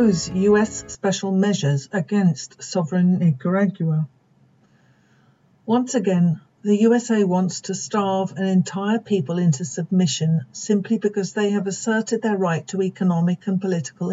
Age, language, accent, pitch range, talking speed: 50-69, English, British, 165-200 Hz, 125 wpm